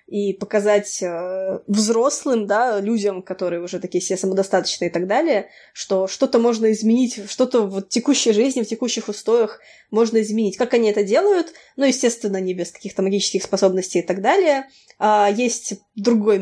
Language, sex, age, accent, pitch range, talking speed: Russian, female, 20-39, native, 190-230 Hz, 160 wpm